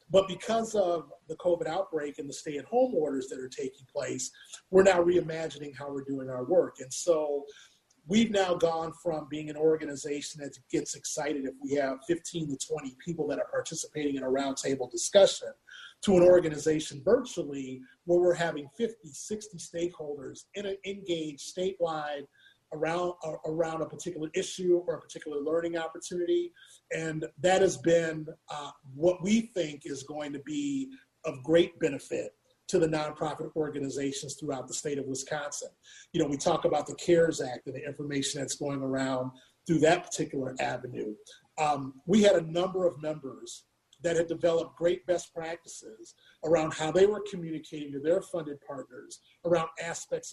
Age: 30-49